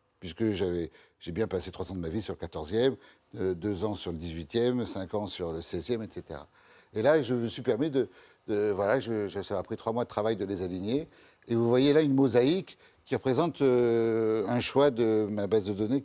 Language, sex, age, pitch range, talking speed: French, male, 60-79, 110-140 Hz, 230 wpm